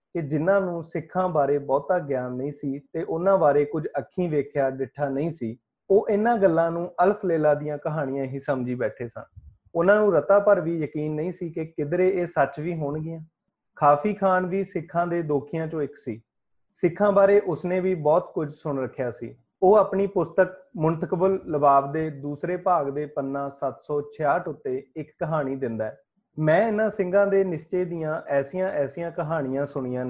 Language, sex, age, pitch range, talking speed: Punjabi, male, 30-49, 140-185 Hz, 135 wpm